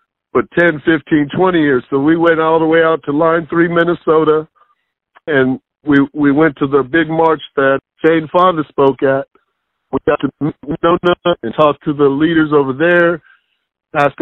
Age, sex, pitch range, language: 50-69, male, 145-170 Hz, English